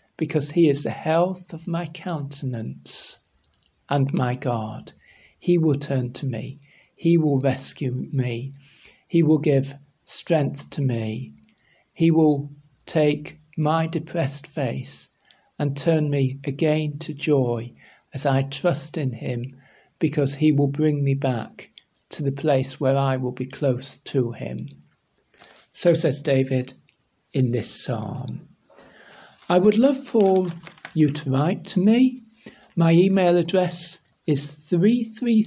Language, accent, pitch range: English, British, 135-175 Hz